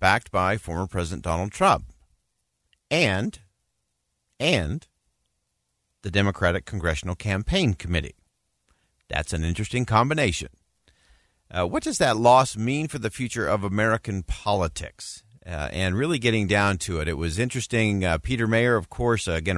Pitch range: 85-125 Hz